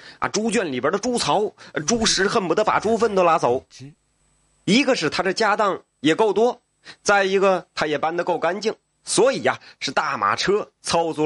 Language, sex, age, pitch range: Chinese, male, 30-49, 140-200 Hz